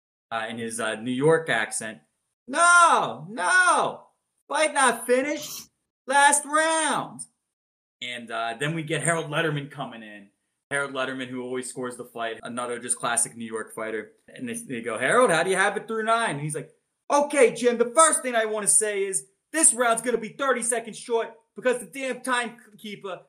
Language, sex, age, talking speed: English, male, 20-39, 190 wpm